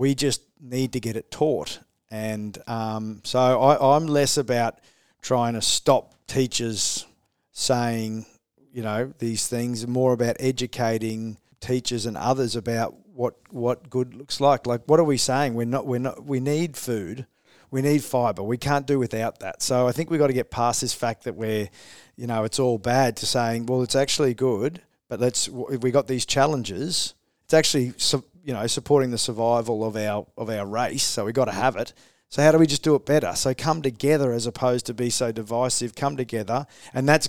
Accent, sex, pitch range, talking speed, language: Australian, male, 115-135 Hz, 200 wpm, English